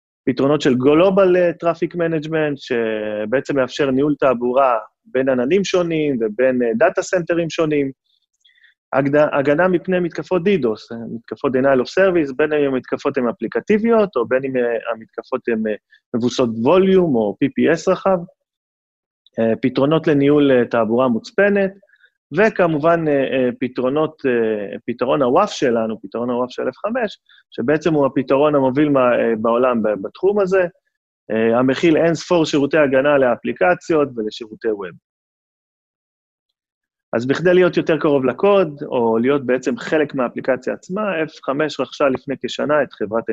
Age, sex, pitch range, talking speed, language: 30-49, male, 125-170 Hz, 115 wpm, Hebrew